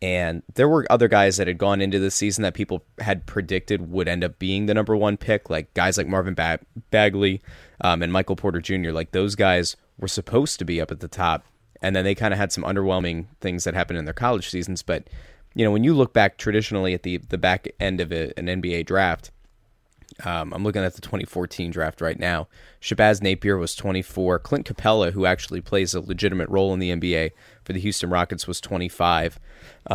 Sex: male